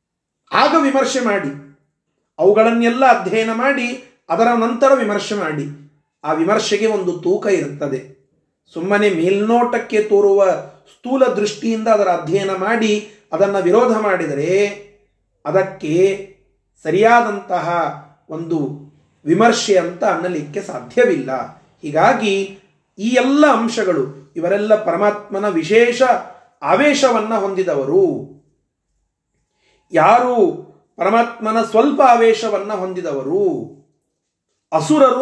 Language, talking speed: Kannada, 80 wpm